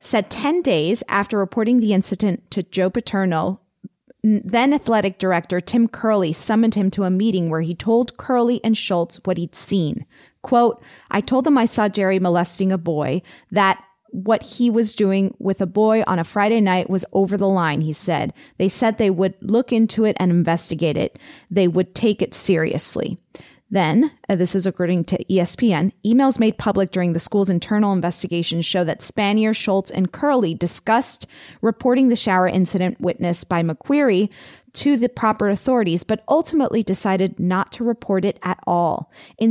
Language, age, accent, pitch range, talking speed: English, 30-49, American, 185-230 Hz, 175 wpm